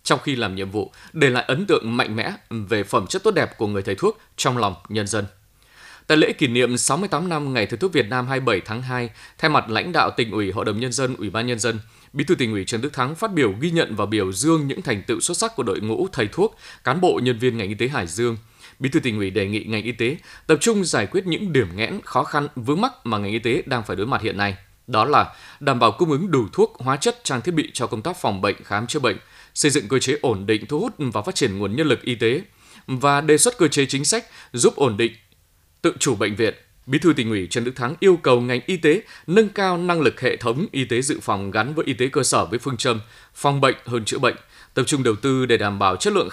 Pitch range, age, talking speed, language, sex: 110-150 Hz, 20-39, 275 wpm, Vietnamese, male